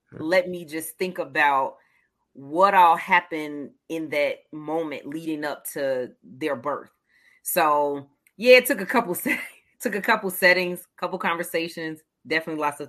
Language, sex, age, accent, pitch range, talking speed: English, female, 30-49, American, 160-205 Hz, 150 wpm